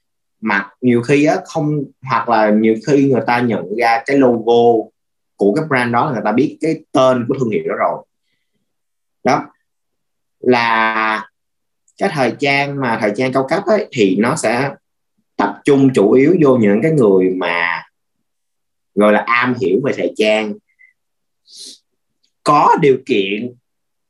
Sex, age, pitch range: male, 20-39, 115-150 Hz